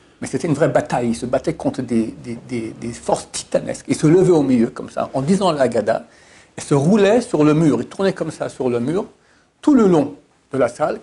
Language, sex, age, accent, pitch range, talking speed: French, male, 60-79, French, 135-185 Hz, 240 wpm